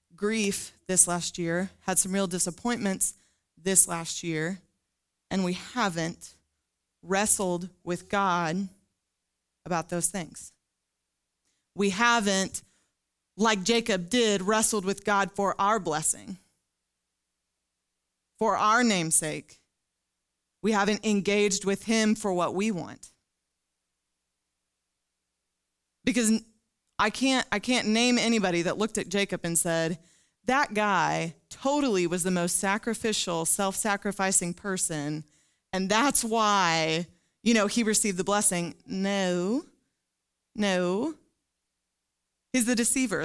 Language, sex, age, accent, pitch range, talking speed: English, female, 20-39, American, 160-210 Hz, 110 wpm